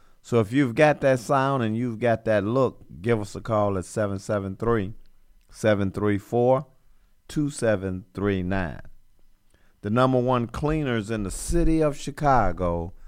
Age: 50-69